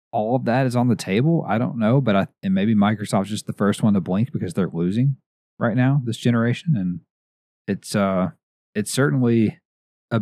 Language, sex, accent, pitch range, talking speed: English, male, American, 90-125 Hz, 200 wpm